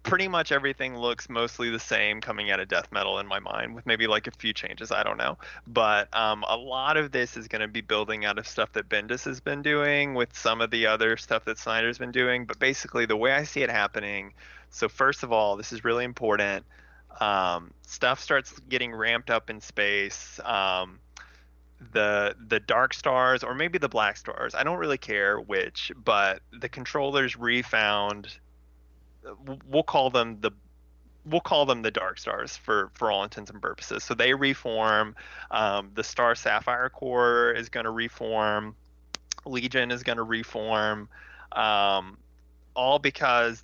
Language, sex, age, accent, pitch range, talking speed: English, male, 20-39, American, 105-125 Hz, 180 wpm